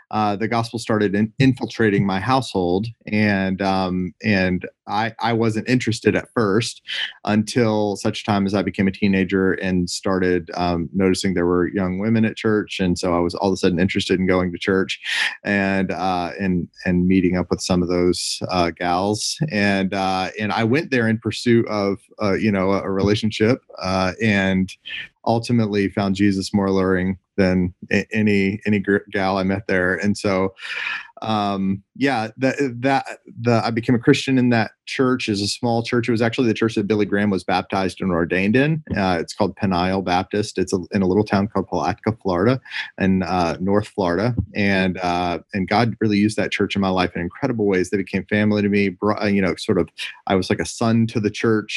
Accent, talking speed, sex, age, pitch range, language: American, 195 wpm, male, 30-49, 95-110 Hz, English